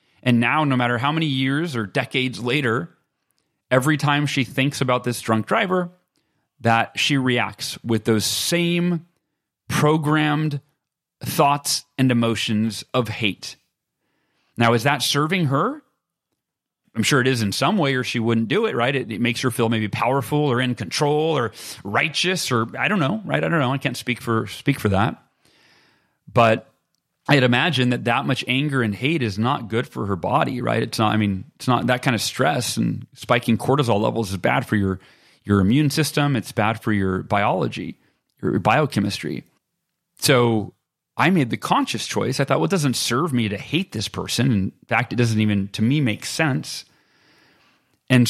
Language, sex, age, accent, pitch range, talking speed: English, male, 30-49, American, 115-145 Hz, 185 wpm